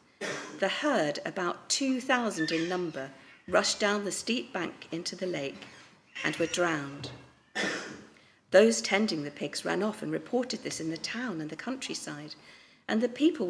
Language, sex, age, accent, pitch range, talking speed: English, female, 40-59, British, 170-230 Hz, 155 wpm